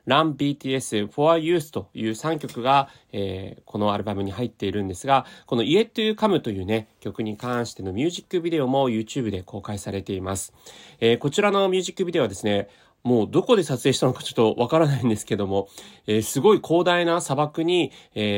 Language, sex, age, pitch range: Japanese, male, 30-49, 105-155 Hz